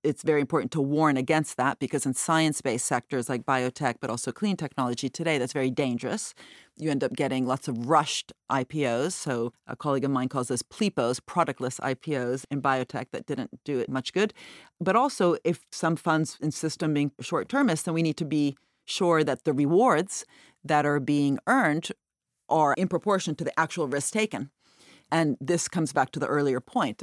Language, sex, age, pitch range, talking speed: English, female, 40-59, 135-165 Hz, 190 wpm